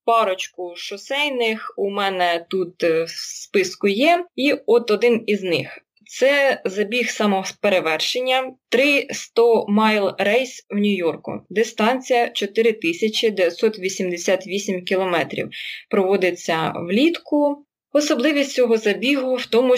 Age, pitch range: 20-39, 185-240 Hz